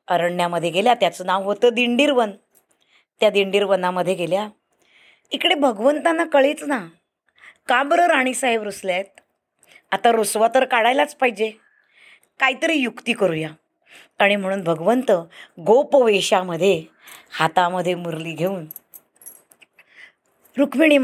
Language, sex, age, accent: Marathi, female, 20-39, native